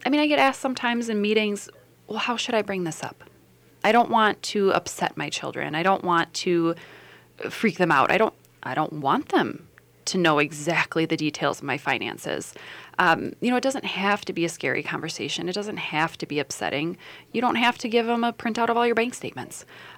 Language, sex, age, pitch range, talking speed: English, female, 20-39, 155-210 Hz, 220 wpm